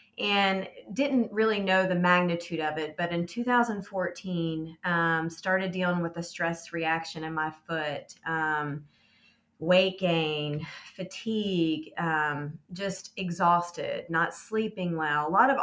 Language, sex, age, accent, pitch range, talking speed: English, female, 30-49, American, 160-190 Hz, 130 wpm